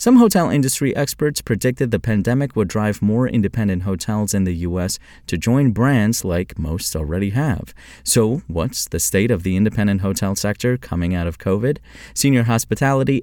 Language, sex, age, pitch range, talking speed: English, male, 30-49, 85-120 Hz, 170 wpm